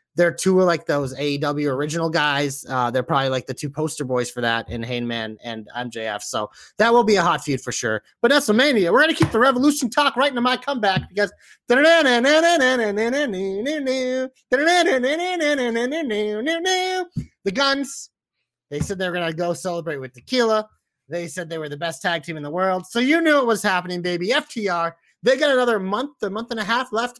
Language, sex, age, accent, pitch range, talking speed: English, male, 30-49, American, 150-230 Hz, 190 wpm